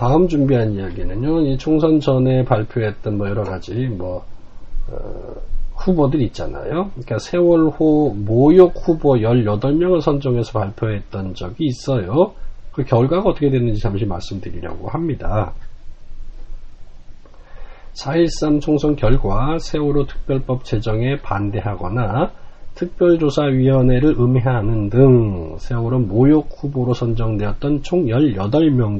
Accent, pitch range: native, 110-150 Hz